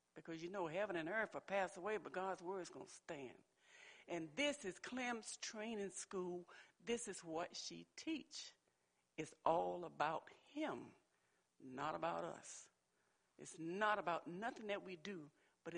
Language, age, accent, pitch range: English, 60-79, American, 165-230 Hz